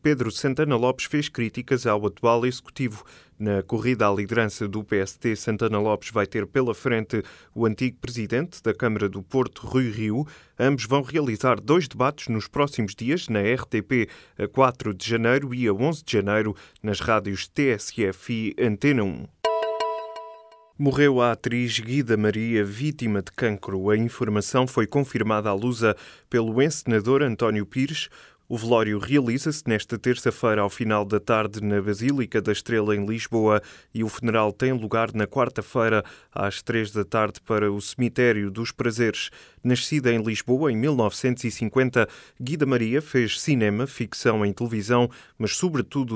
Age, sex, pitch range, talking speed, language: 20-39, male, 105-125 Hz, 150 wpm, Portuguese